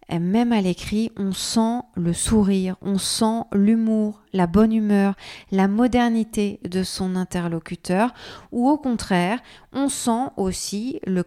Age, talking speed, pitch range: 40-59, 140 wpm, 175-220 Hz